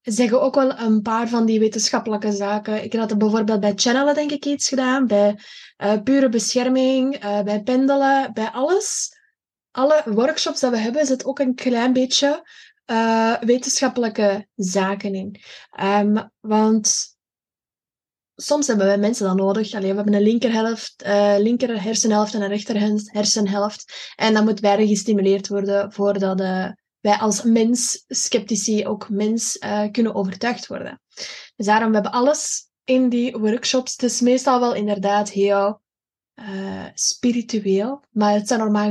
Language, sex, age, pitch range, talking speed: Dutch, female, 20-39, 210-255 Hz, 155 wpm